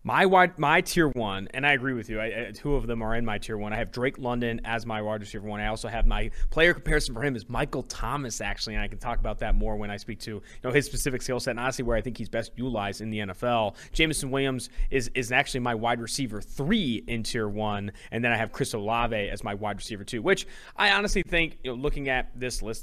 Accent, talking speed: American, 270 wpm